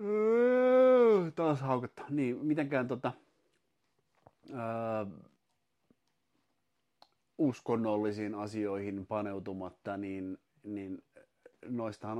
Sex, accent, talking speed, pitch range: male, native, 60 wpm, 100-115 Hz